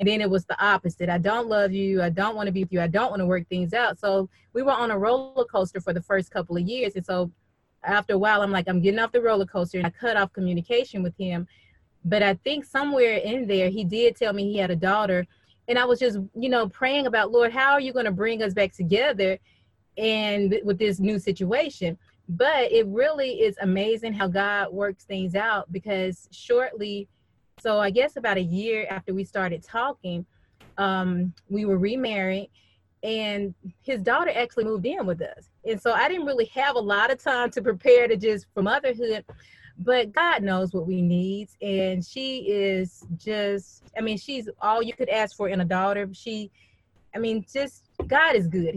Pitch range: 190-230 Hz